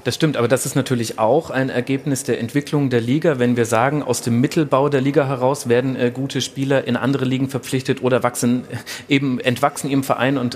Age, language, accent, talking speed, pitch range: 30-49, German, German, 215 wpm, 125-150 Hz